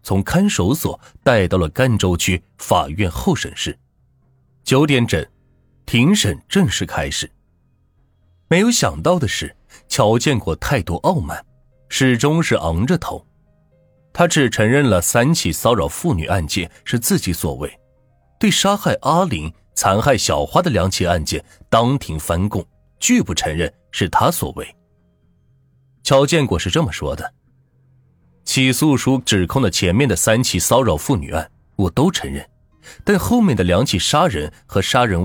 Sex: male